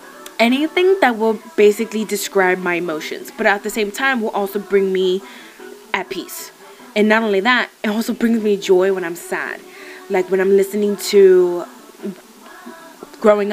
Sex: female